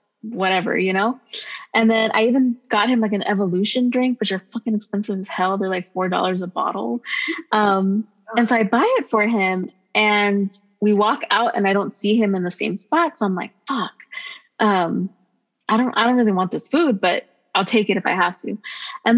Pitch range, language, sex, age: 205-255 Hz, English, female, 20-39